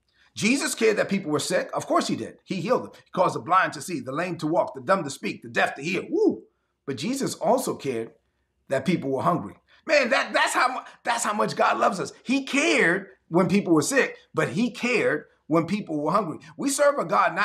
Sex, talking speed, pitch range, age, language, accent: male, 225 wpm, 155-220 Hz, 30-49, English, American